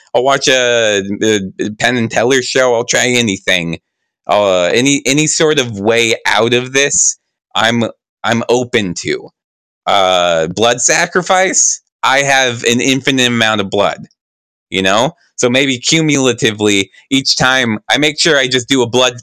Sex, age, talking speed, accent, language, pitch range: male, 20-39, 155 wpm, American, English, 100-125 Hz